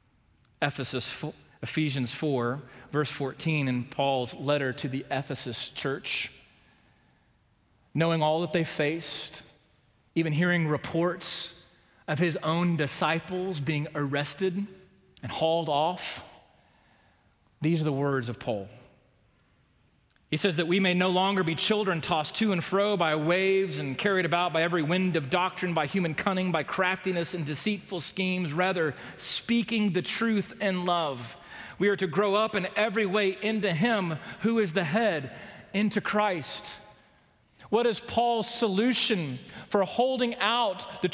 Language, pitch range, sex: English, 150-205 Hz, male